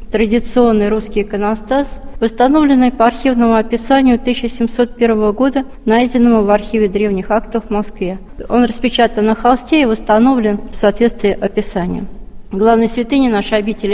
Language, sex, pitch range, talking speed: Russian, female, 205-245 Hz, 125 wpm